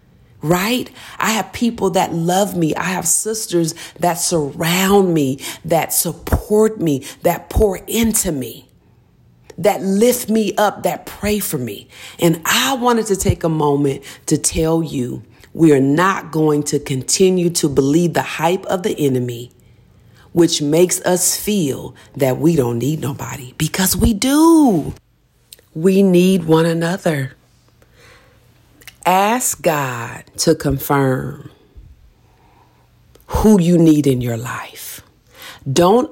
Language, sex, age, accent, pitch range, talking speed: English, female, 40-59, American, 140-195 Hz, 130 wpm